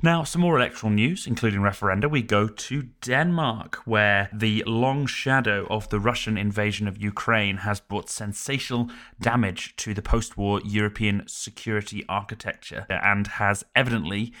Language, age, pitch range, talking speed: English, 30-49, 105-120 Hz, 140 wpm